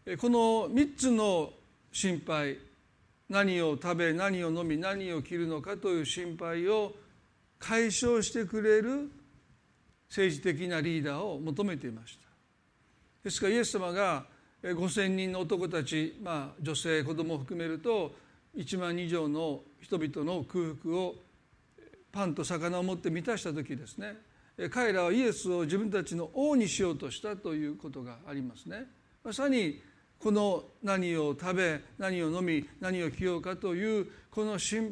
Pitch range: 160-220 Hz